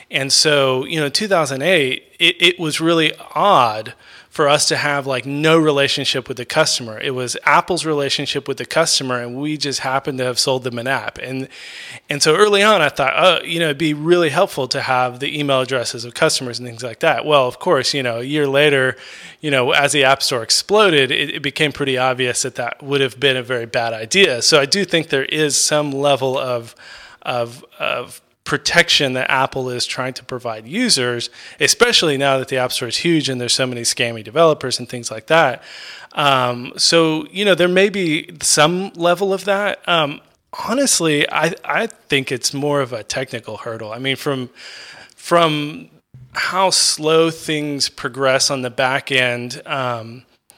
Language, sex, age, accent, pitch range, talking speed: English, male, 20-39, American, 130-160 Hz, 195 wpm